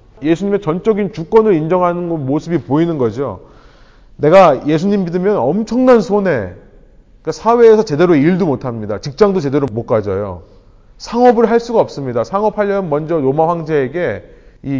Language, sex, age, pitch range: Korean, male, 30-49, 130-200 Hz